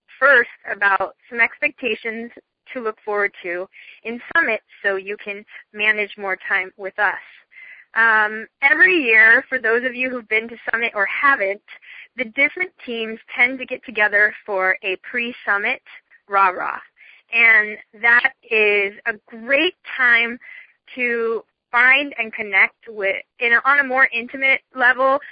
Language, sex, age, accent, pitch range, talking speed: English, female, 20-39, American, 210-255 Hz, 140 wpm